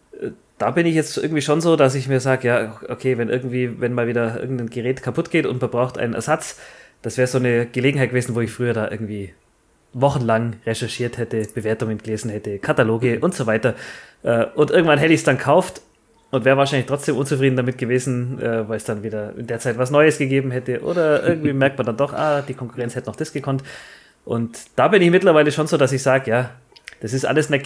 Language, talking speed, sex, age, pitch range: German, 220 wpm, male, 20-39, 120-145 Hz